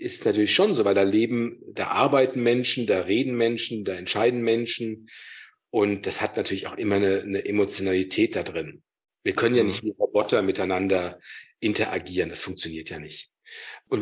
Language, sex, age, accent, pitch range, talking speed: German, male, 40-59, German, 105-140 Hz, 170 wpm